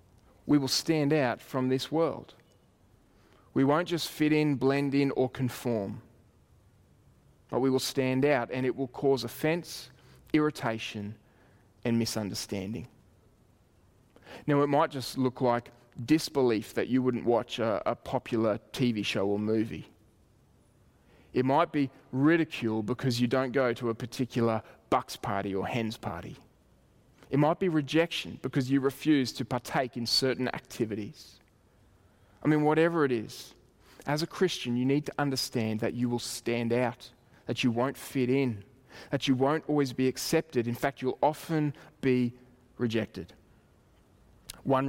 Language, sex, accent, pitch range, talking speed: English, male, Australian, 115-140 Hz, 145 wpm